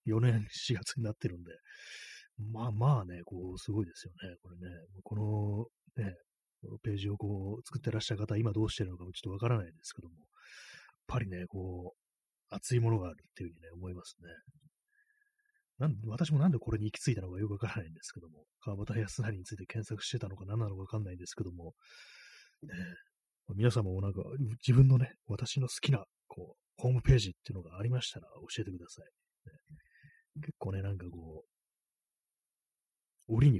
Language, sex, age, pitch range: Japanese, male, 30-49, 95-125 Hz